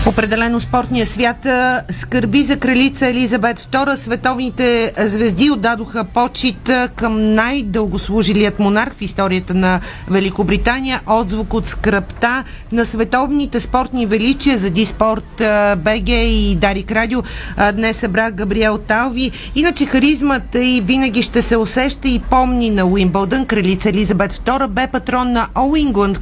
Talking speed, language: 125 wpm, Bulgarian